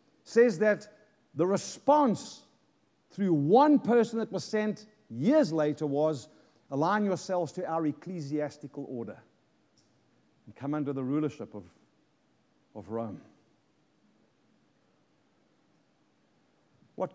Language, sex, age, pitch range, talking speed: English, male, 60-79, 140-210 Hz, 100 wpm